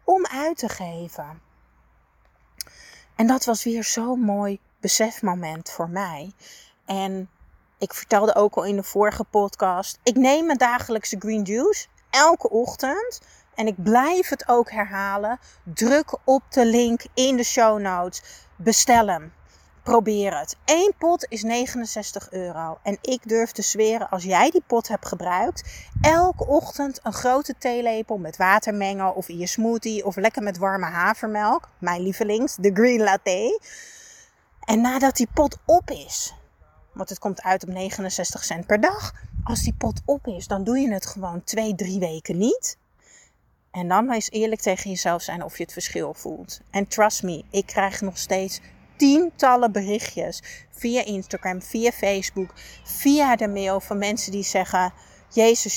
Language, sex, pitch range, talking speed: Dutch, female, 195-250 Hz, 160 wpm